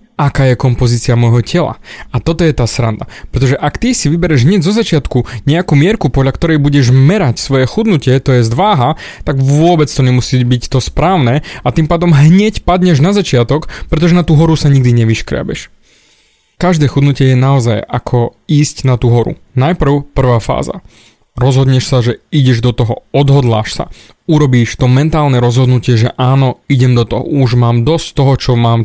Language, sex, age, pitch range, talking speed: Slovak, male, 20-39, 120-150 Hz, 175 wpm